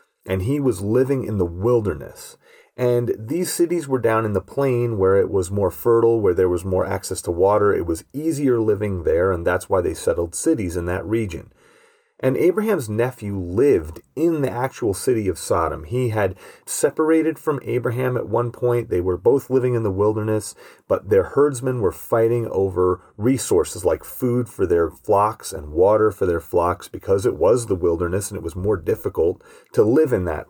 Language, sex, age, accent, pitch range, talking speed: English, male, 30-49, American, 105-165 Hz, 190 wpm